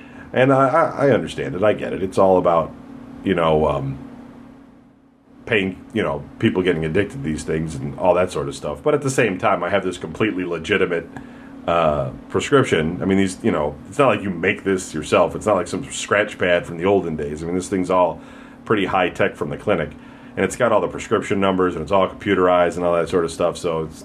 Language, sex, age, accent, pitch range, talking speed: English, male, 40-59, American, 100-140 Hz, 230 wpm